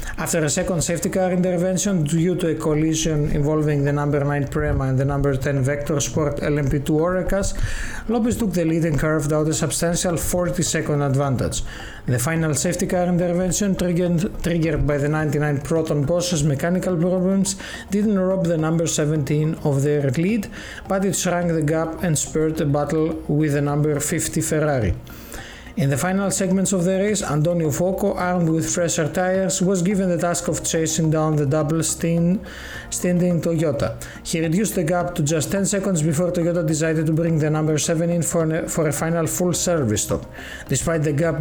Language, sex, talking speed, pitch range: Greek, male, 175 wpm, 150-180 Hz